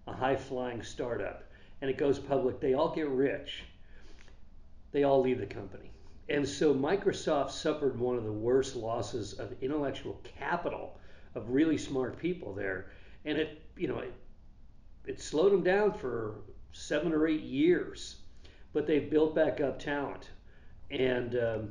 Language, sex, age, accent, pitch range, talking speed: English, male, 50-69, American, 100-145 Hz, 150 wpm